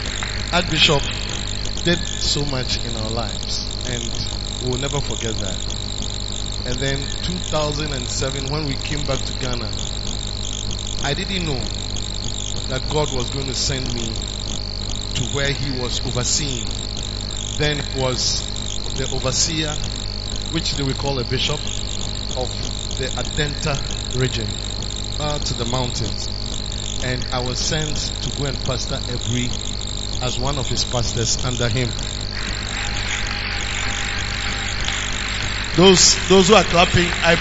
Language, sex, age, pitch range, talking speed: English, male, 50-69, 105-145 Hz, 125 wpm